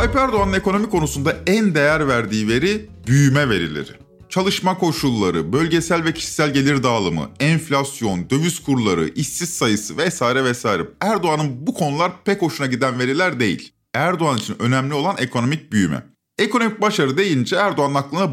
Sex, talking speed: male, 140 wpm